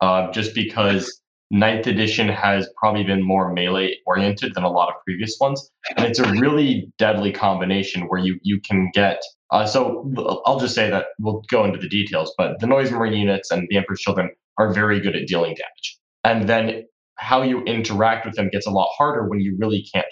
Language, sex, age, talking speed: English, male, 20-39, 205 wpm